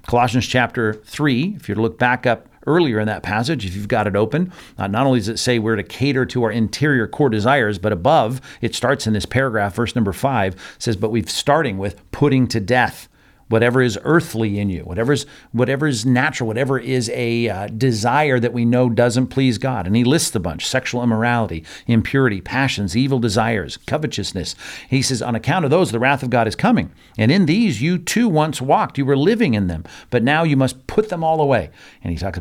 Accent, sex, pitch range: American, male, 110-135 Hz